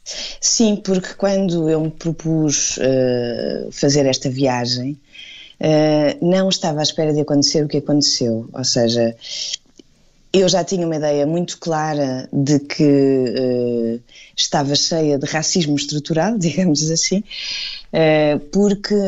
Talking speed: 125 wpm